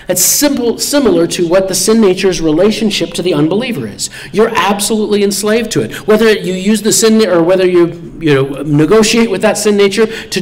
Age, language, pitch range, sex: 40-59, English, 125-200 Hz, male